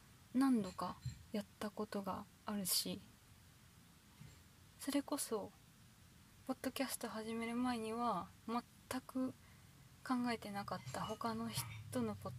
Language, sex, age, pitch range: Japanese, female, 20-39, 175-245 Hz